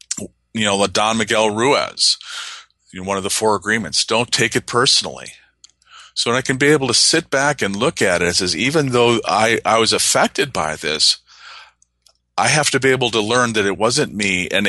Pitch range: 100-125 Hz